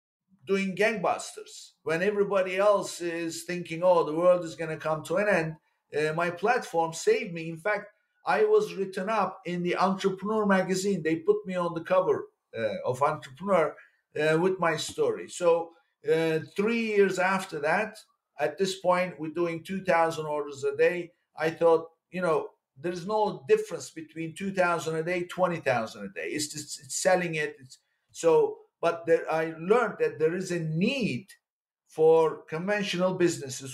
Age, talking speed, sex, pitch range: 50-69, 165 wpm, male, 160-195 Hz